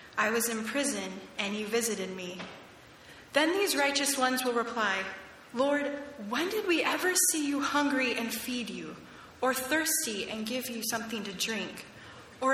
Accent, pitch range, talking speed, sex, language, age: American, 215-275 Hz, 165 wpm, female, English, 10-29